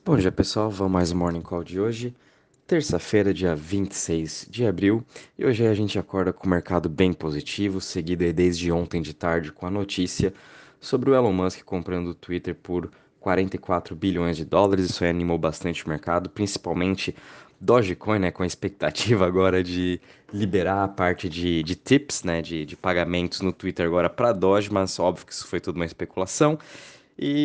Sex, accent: male, Brazilian